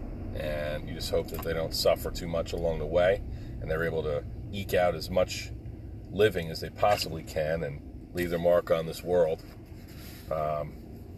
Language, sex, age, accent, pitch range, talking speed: English, male, 40-59, American, 80-105 Hz, 185 wpm